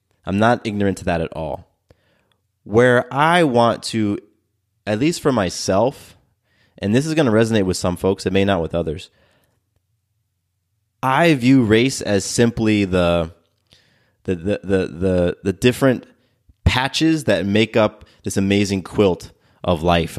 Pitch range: 95-115 Hz